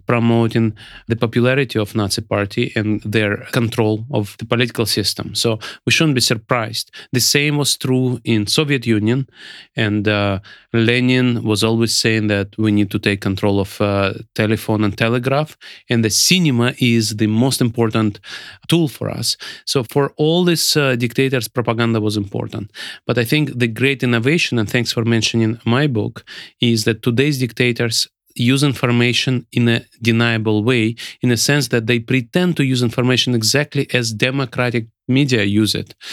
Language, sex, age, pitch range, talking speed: Hungarian, male, 30-49, 110-135 Hz, 160 wpm